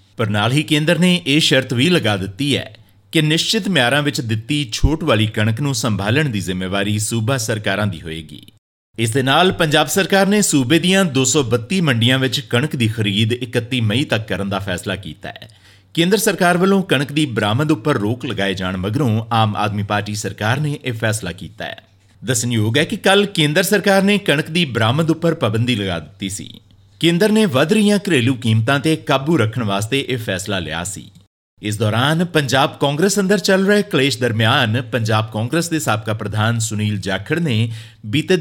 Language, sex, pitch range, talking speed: Punjabi, male, 105-160 Hz, 165 wpm